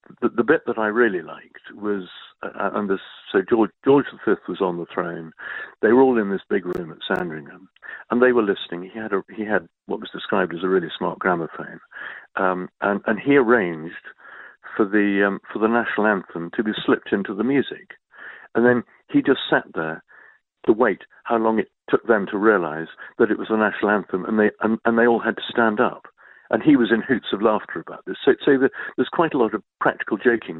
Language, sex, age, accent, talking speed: English, male, 50-69, British, 220 wpm